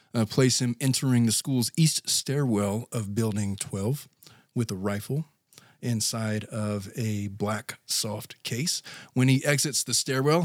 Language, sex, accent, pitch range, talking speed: English, male, American, 115-145 Hz, 145 wpm